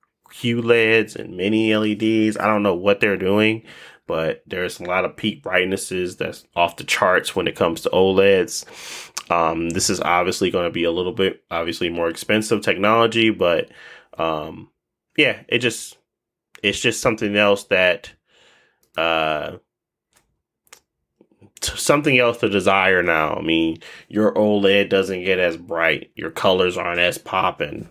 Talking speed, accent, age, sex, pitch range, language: 150 wpm, American, 20-39, male, 85-115 Hz, English